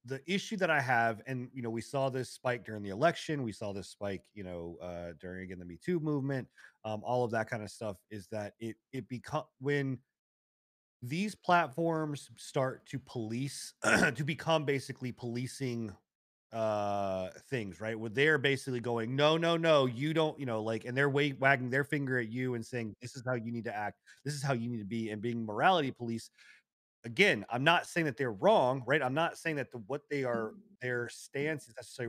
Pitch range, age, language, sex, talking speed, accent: 110-135 Hz, 30-49, English, male, 210 wpm, American